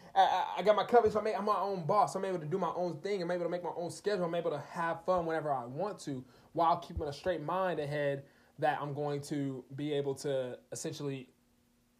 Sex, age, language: male, 20-39, English